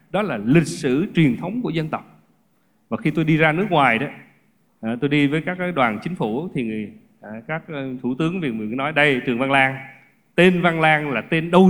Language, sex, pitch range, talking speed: Vietnamese, male, 155-230 Hz, 195 wpm